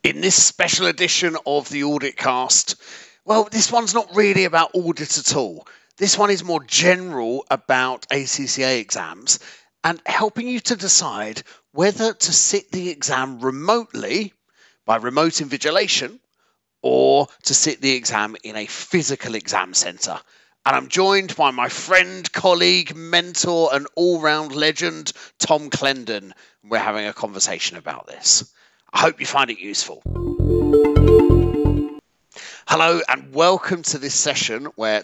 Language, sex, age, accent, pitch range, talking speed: English, male, 40-59, British, 110-175 Hz, 140 wpm